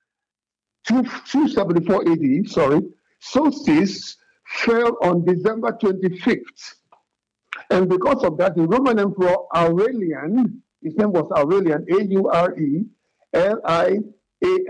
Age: 60-79